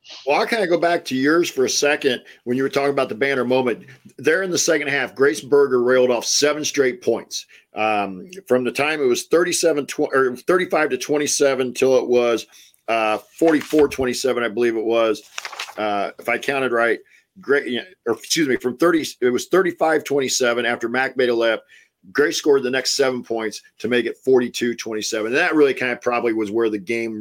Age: 50-69